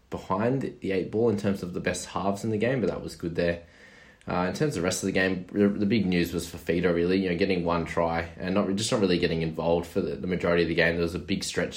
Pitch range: 85-95 Hz